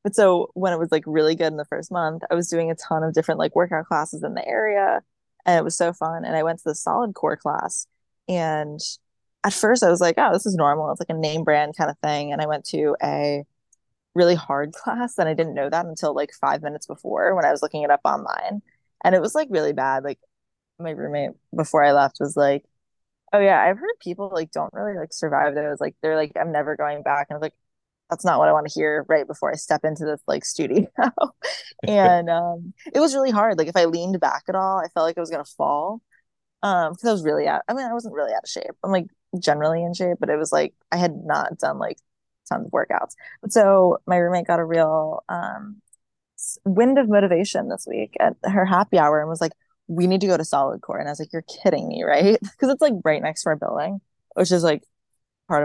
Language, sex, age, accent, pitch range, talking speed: English, female, 20-39, American, 150-190 Hz, 250 wpm